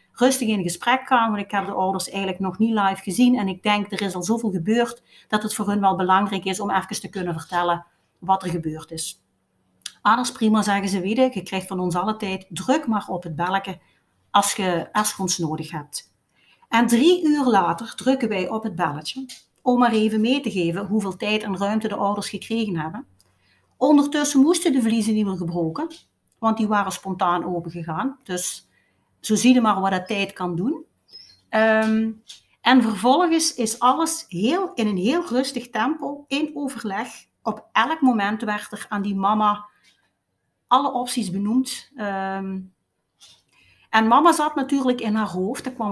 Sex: female